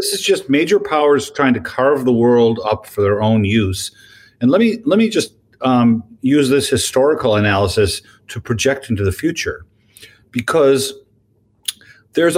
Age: 50-69